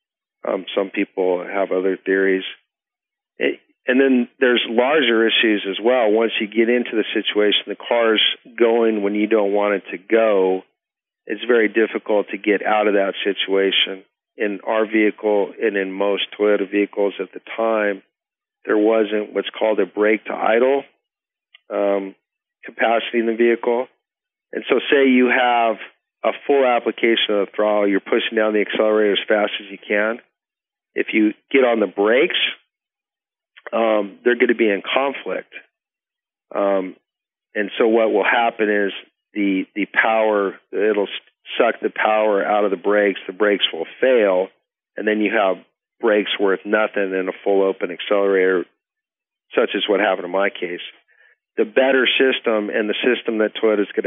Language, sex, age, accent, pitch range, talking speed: English, male, 50-69, American, 100-115 Hz, 160 wpm